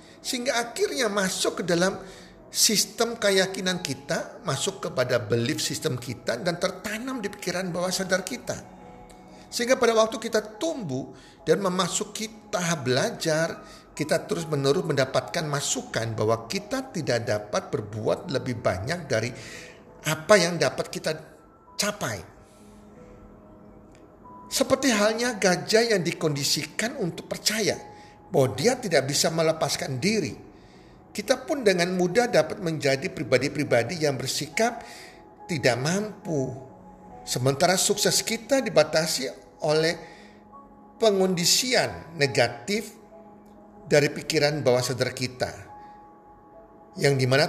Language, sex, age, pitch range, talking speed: Indonesian, male, 50-69, 130-205 Hz, 110 wpm